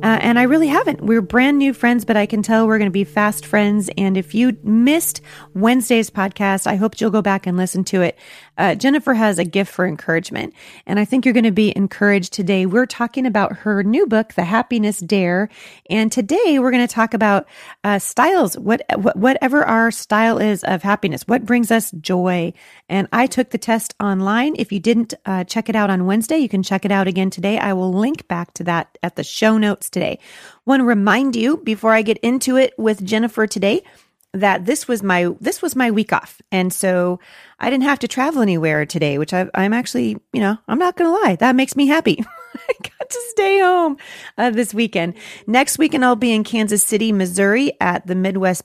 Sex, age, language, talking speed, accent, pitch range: female, 40-59, English, 220 wpm, American, 190-240 Hz